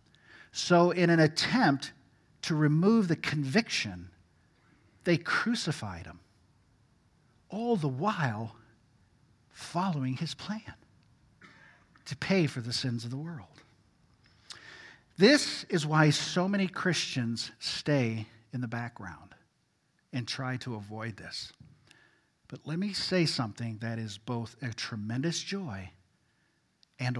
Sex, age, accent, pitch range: male, 50-69, American, 115-190 Hz